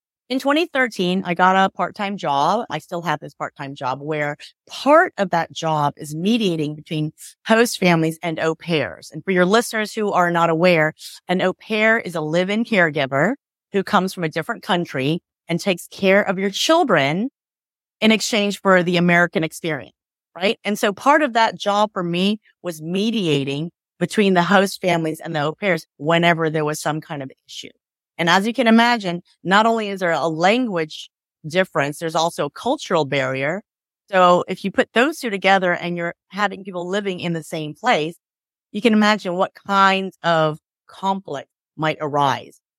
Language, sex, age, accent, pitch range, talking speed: English, female, 30-49, American, 160-215 Hz, 180 wpm